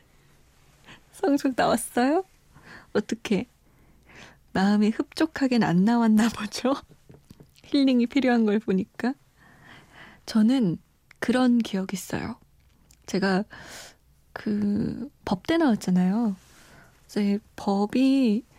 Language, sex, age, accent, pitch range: Korean, female, 20-39, native, 195-255 Hz